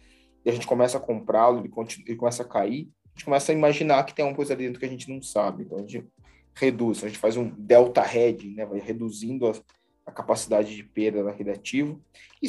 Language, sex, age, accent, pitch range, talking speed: Portuguese, male, 20-39, Brazilian, 120-155 Hz, 235 wpm